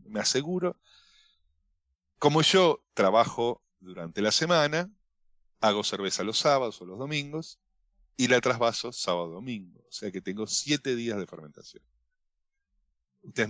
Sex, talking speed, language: male, 125 wpm, Spanish